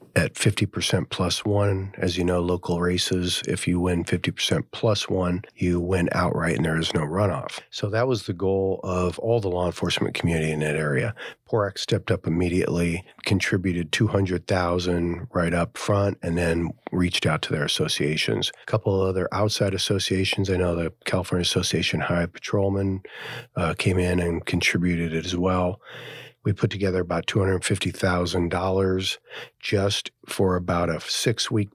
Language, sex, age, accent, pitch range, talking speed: English, male, 40-59, American, 85-100 Hz, 165 wpm